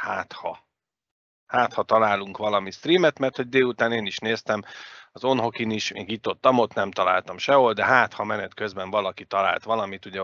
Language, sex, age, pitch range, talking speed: Hungarian, male, 40-59, 100-125 Hz, 175 wpm